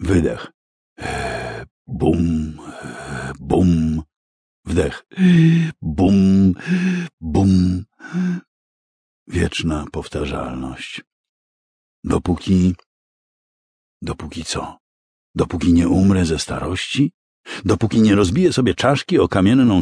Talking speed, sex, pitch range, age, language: 70 wpm, male, 80-125 Hz, 60-79, Polish